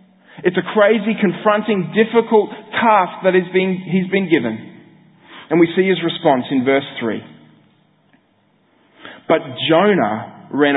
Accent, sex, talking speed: Australian, male, 125 wpm